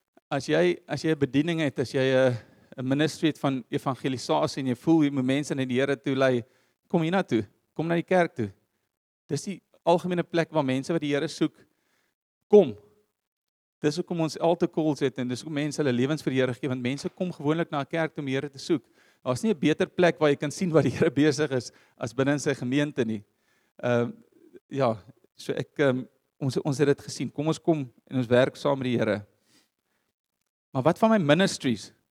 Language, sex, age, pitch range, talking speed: English, male, 40-59, 130-155 Hz, 210 wpm